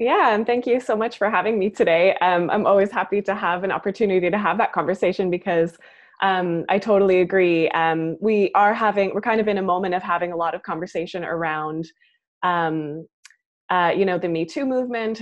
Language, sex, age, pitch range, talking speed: English, female, 20-39, 165-205 Hz, 205 wpm